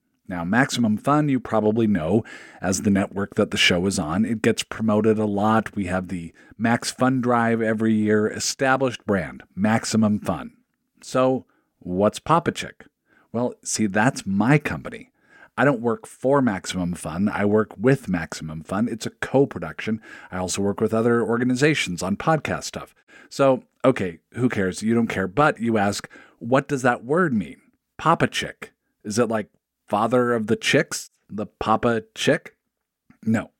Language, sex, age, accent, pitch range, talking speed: English, male, 50-69, American, 105-130 Hz, 165 wpm